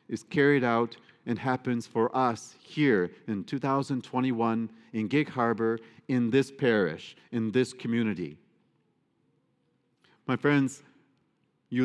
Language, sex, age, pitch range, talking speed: English, male, 40-59, 105-125 Hz, 110 wpm